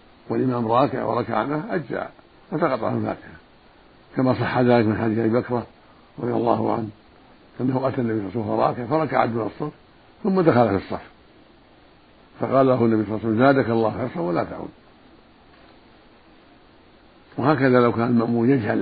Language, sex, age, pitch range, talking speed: Arabic, male, 60-79, 110-130 Hz, 160 wpm